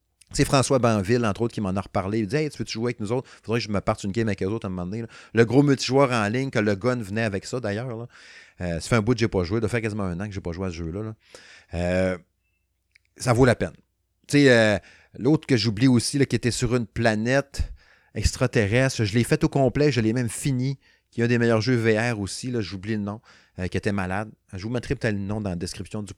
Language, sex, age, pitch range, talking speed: French, male, 30-49, 100-135 Hz, 275 wpm